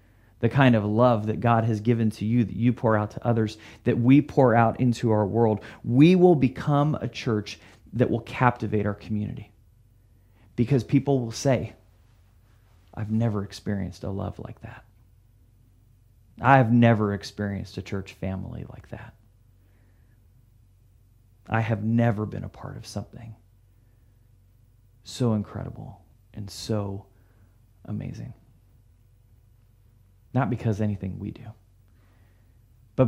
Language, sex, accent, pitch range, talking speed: English, male, American, 100-115 Hz, 130 wpm